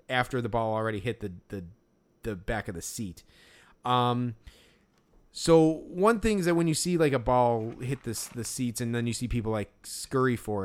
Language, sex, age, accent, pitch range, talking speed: English, male, 30-49, American, 115-150 Hz, 205 wpm